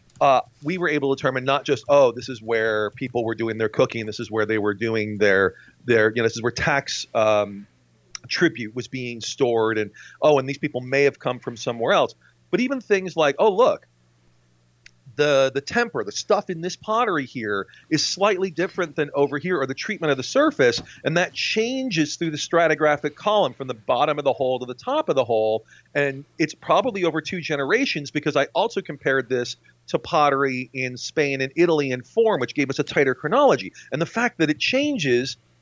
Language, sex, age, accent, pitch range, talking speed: English, male, 40-59, American, 125-175 Hz, 210 wpm